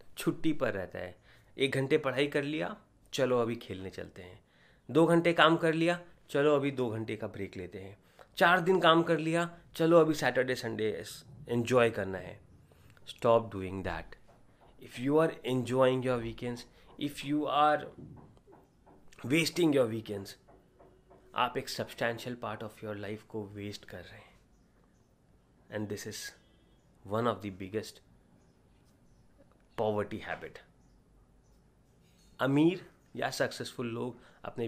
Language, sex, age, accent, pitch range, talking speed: Hindi, male, 30-49, native, 105-150 Hz, 140 wpm